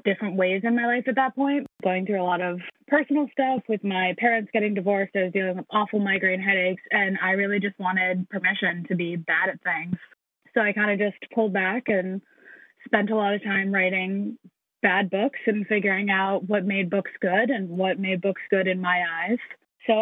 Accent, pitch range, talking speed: American, 185-215 Hz, 210 wpm